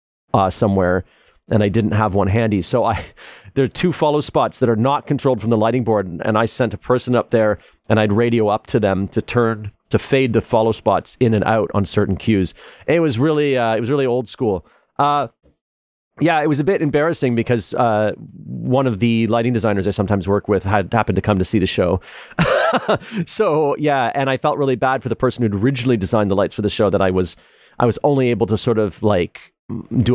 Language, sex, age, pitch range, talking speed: English, male, 40-59, 100-125 Hz, 230 wpm